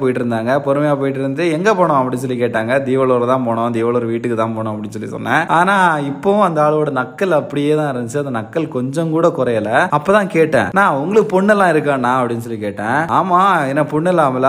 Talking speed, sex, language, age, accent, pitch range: 40 wpm, male, Tamil, 20-39, native, 125-155 Hz